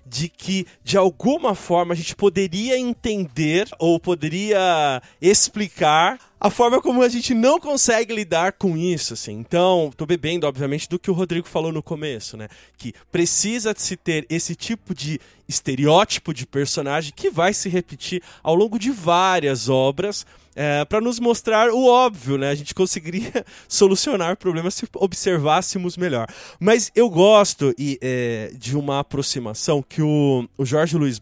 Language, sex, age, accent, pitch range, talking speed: Portuguese, male, 20-39, Brazilian, 135-195 Hz, 155 wpm